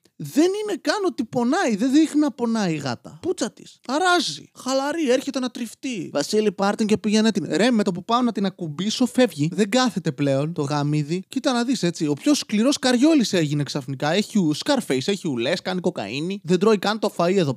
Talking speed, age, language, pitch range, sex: 205 wpm, 20-39, Greek, 145-240 Hz, male